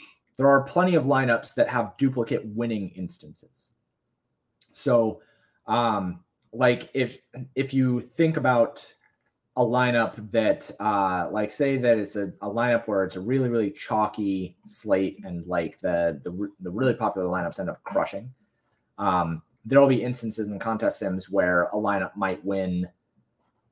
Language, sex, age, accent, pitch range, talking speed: English, male, 30-49, American, 95-120 Hz, 155 wpm